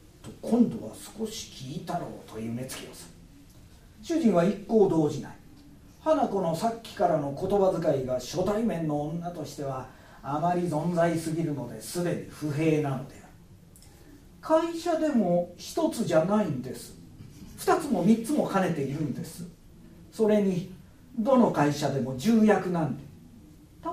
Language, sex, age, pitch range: Japanese, male, 40-59, 145-220 Hz